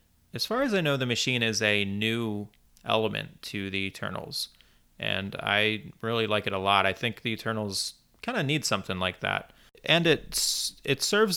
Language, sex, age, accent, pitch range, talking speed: English, male, 30-49, American, 100-125 Hz, 185 wpm